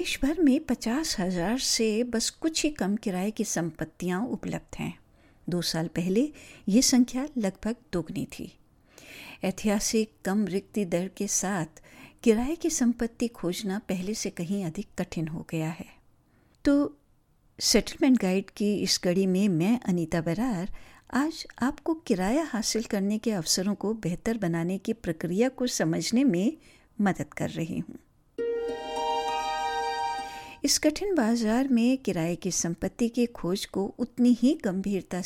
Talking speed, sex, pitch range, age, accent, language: 140 wpm, female, 175-245 Hz, 60-79, native, Hindi